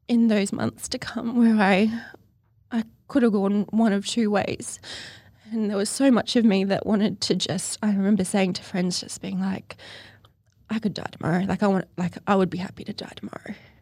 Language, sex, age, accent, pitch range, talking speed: English, female, 20-39, Australian, 175-210 Hz, 215 wpm